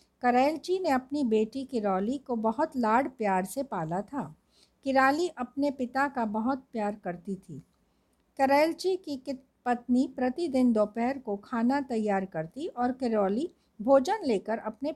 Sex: female